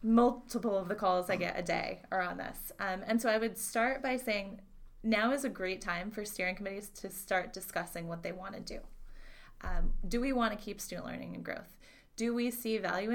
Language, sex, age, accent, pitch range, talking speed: English, female, 20-39, American, 185-230 Hz, 225 wpm